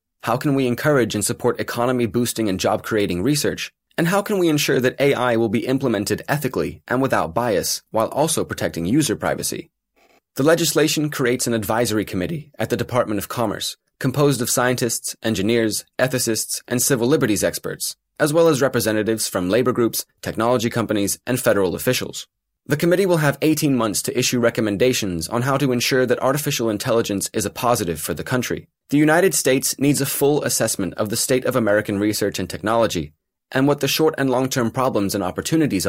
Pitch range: 105-130 Hz